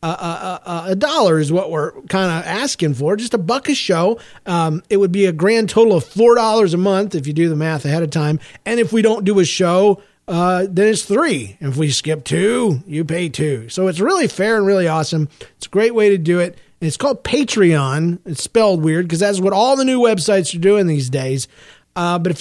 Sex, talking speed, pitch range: male, 240 wpm, 155-215 Hz